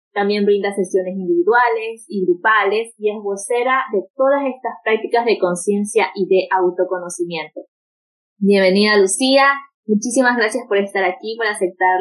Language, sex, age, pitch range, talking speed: Spanish, female, 20-39, 190-240 Hz, 135 wpm